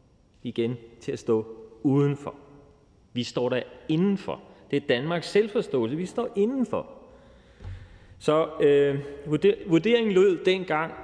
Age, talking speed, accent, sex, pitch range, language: 30-49, 110 wpm, native, male, 125-170 Hz, Danish